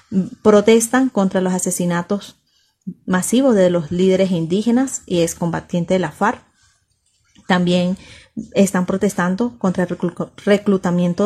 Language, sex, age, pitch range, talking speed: Spanish, female, 30-49, 175-205 Hz, 105 wpm